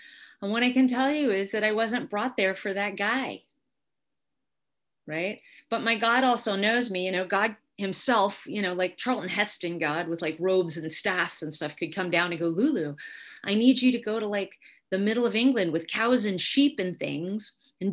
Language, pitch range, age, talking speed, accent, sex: English, 160-215 Hz, 30-49, 210 wpm, American, female